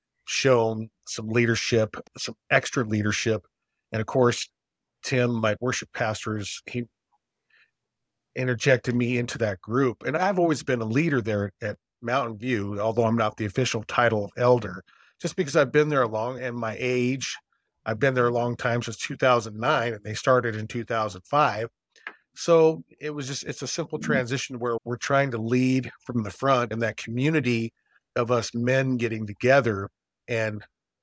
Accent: American